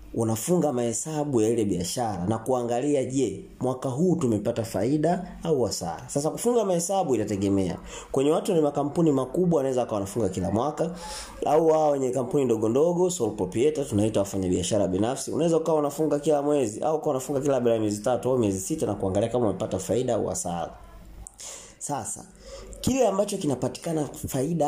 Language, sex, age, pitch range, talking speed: Swahili, male, 30-49, 105-150 Hz, 165 wpm